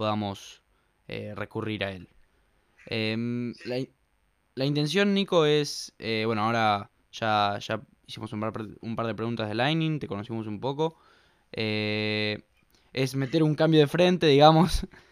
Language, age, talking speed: Spanish, 10-29, 150 wpm